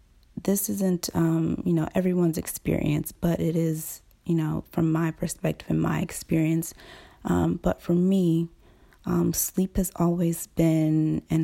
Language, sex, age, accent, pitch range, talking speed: English, female, 20-39, American, 150-170 Hz, 145 wpm